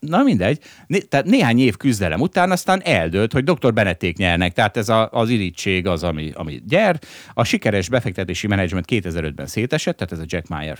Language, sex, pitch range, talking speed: Hungarian, male, 90-130 Hz, 190 wpm